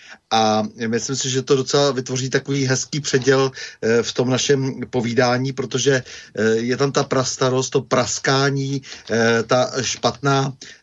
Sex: male